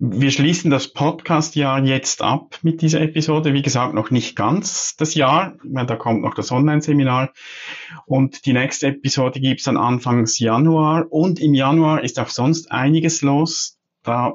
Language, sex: German, male